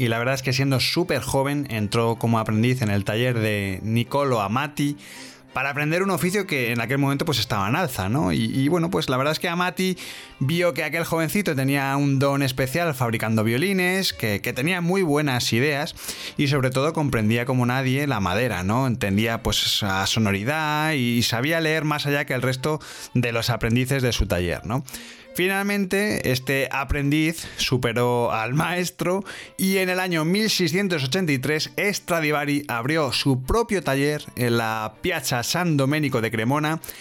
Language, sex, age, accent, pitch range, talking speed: Spanish, male, 20-39, Spanish, 120-165 Hz, 175 wpm